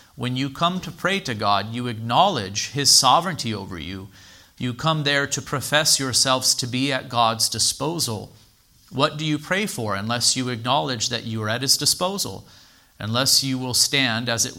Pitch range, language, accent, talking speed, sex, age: 110-130 Hz, English, American, 180 wpm, male, 40-59